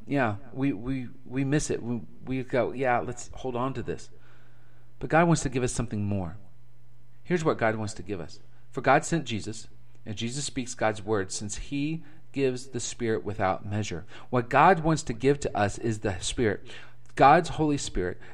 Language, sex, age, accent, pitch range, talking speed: English, male, 40-59, American, 120-165 Hz, 195 wpm